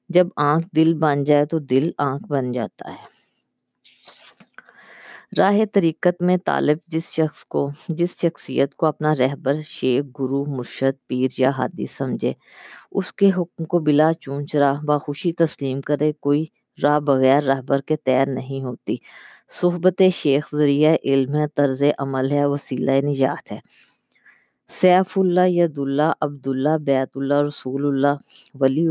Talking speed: 145 wpm